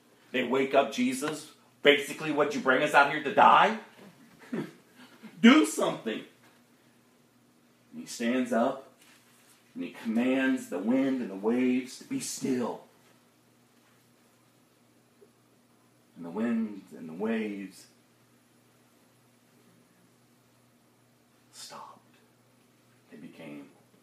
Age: 40-59